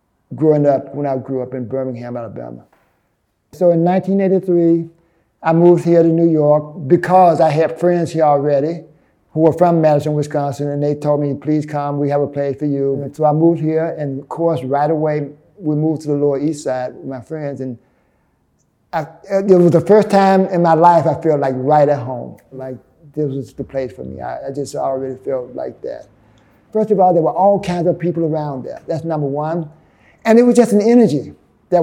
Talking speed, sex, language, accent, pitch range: 205 wpm, male, English, American, 145-185 Hz